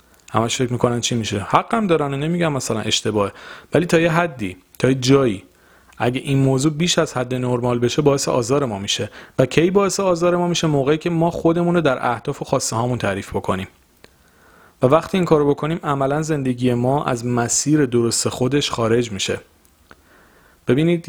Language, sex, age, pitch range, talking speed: Persian, male, 40-59, 110-145 Hz, 170 wpm